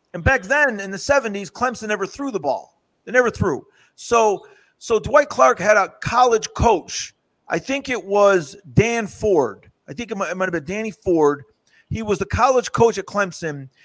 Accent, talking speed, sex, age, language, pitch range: American, 195 wpm, male, 40-59, English, 190-240 Hz